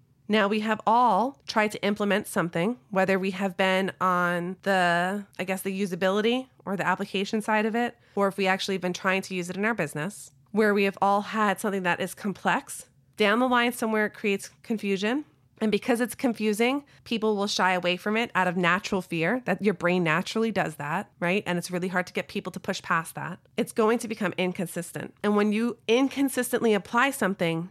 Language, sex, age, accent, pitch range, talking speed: English, female, 30-49, American, 180-220 Hz, 210 wpm